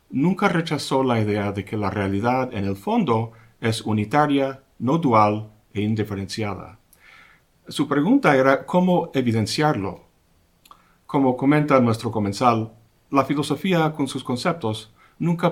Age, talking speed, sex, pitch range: 50-69, 125 wpm, male, 105-140 Hz